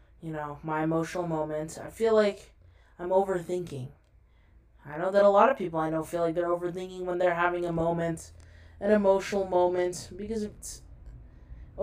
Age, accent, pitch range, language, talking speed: 20-39, American, 170-225 Hz, English, 165 wpm